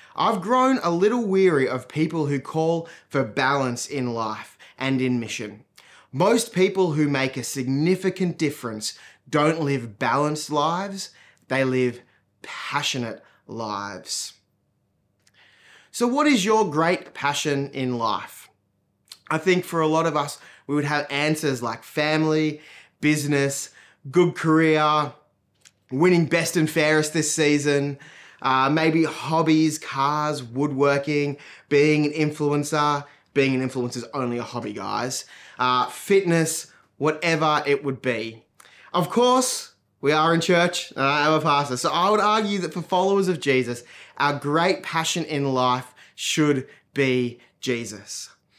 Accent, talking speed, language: Australian, 135 wpm, English